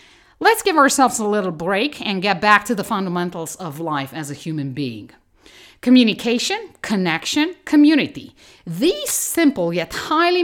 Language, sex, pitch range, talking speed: English, female, 170-275 Hz, 145 wpm